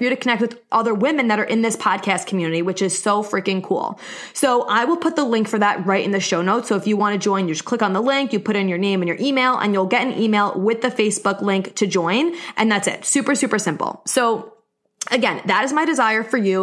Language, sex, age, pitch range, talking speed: English, female, 20-39, 190-235 Hz, 270 wpm